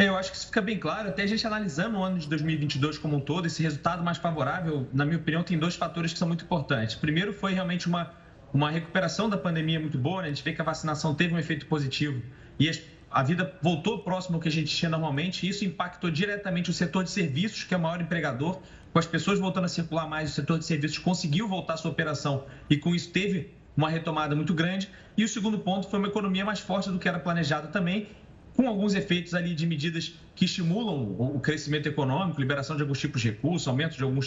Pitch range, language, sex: 150-185 Hz, Portuguese, male